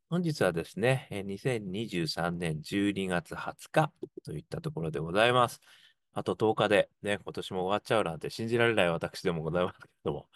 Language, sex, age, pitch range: Japanese, male, 30-49, 85-135 Hz